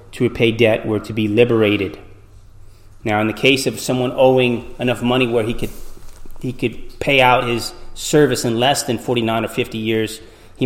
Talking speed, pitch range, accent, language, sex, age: 185 wpm, 105-125 Hz, American, English, male, 30-49